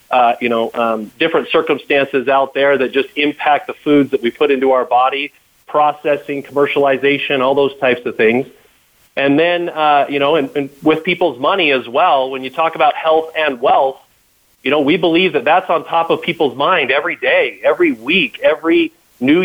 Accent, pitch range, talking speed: American, 135-160 Hz, 190 wpm